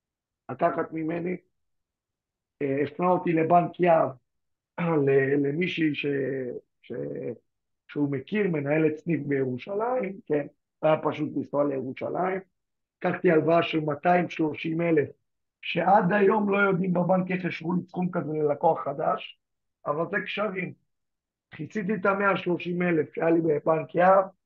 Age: 50-69